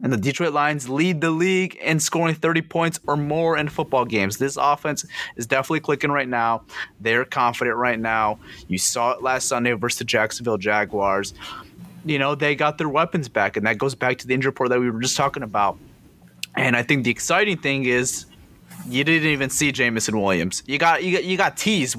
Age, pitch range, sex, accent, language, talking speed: 30-49, 130-175 Hz, male, American, English, 210 wpm